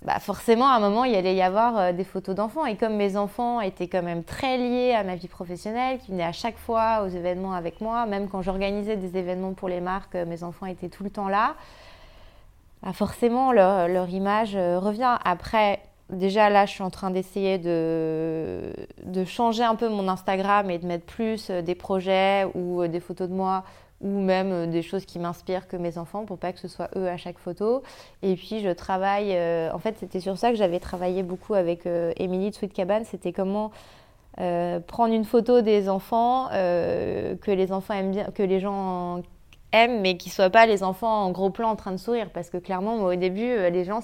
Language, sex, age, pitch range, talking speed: French, female, 20-39, 180-210 Hz, 215 wpm